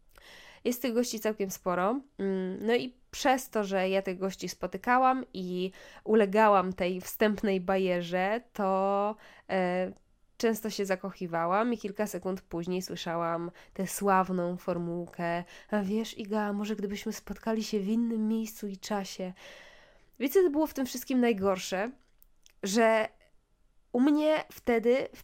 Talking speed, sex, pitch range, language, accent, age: 135 wpm, female, 185-240 Hz, Polish, native, 20-39